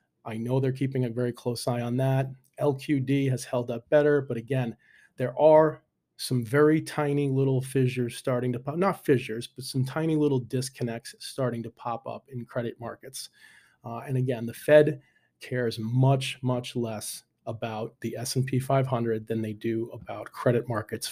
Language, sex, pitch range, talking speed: English, male, 120-140 Hz, 170 wpm